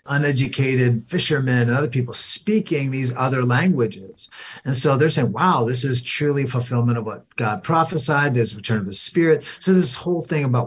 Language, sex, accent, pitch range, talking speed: English, male, American, 110-135 Hz, 180 wpm